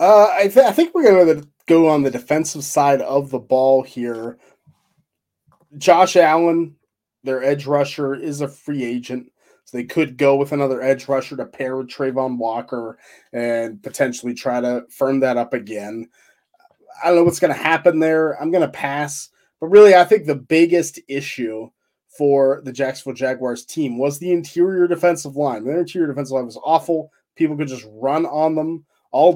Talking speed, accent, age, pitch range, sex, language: 180 wpm, American, 20-39, 125-160 Hz, male, English